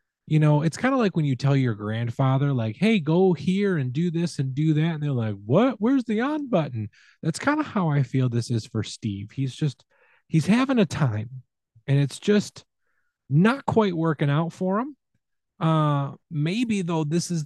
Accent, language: American, English